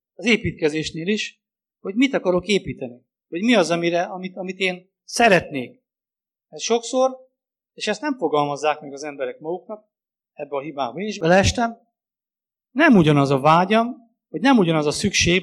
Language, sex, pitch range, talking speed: English, male, 165-225 Hz, 150 wpm